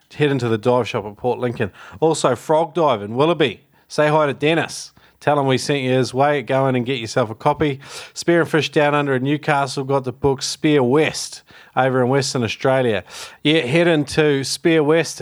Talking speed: 205 wpm